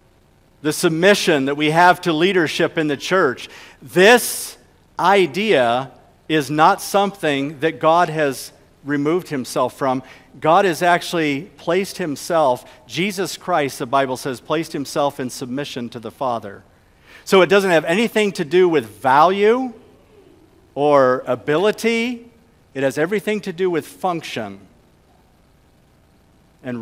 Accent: American